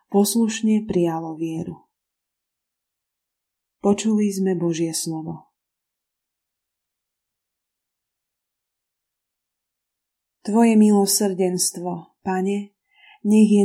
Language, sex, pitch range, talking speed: Slovak, female, 170-200 Hz, 55 wpm